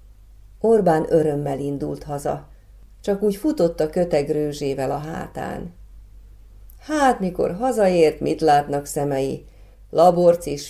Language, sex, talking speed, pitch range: Hungarian, female, 105 wpm, 140-185 Hz